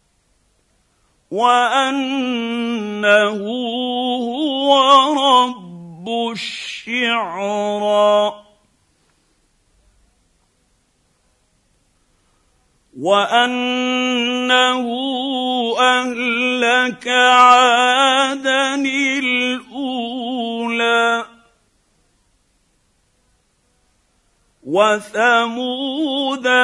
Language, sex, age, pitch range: Arabic, male, 50-69, 210-250 Hz